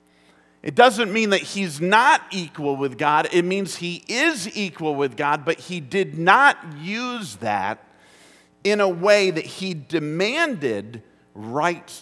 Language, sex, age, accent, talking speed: English, male, 50-69, American, 145 wpm